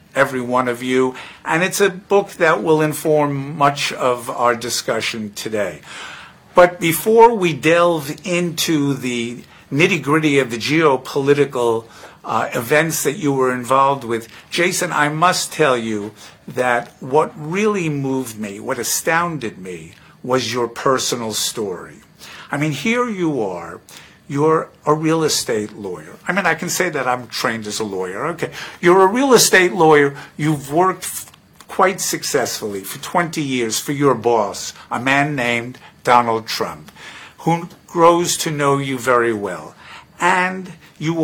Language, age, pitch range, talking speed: Hebrew, 50-69, 125-170 Hz, 155 wpm